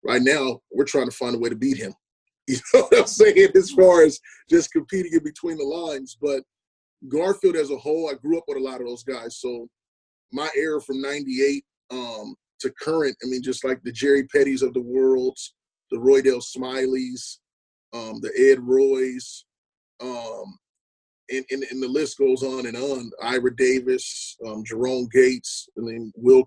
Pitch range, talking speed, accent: 125-160 Hz, 180 wpm, American